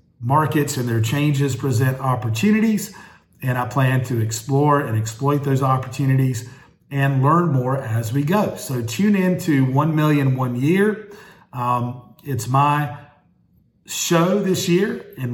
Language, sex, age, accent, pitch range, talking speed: English, male, 40-59, American, 125-145 Hz, 140 wpm